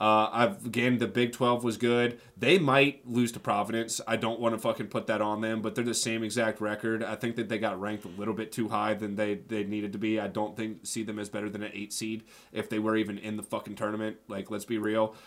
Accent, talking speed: American, 265 wpm